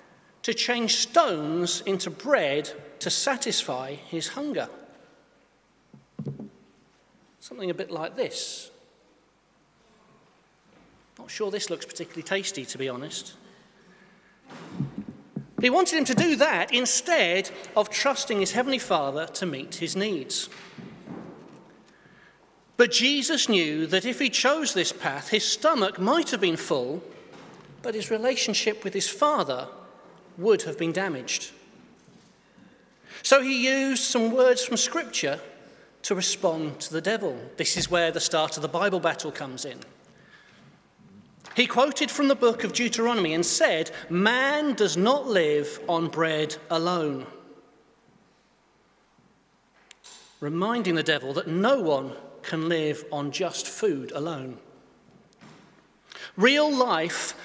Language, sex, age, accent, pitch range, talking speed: English, male, 40-59, British, 165-255 Hz, 120 wpm